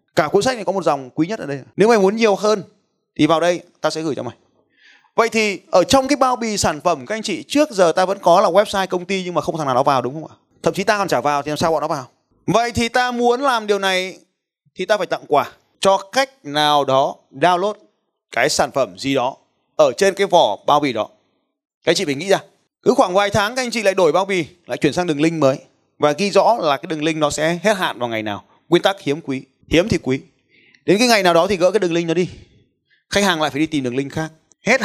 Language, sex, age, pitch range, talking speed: Vietnamese, male, 20-39, 145-200 Hz, 275 wpm